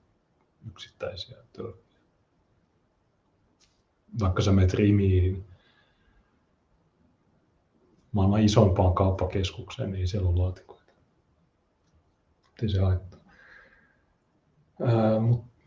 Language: Finnish